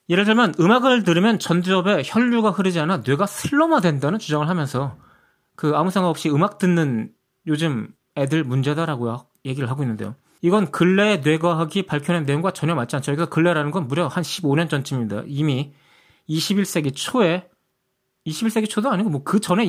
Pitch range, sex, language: 145-205 Hz, male, Korean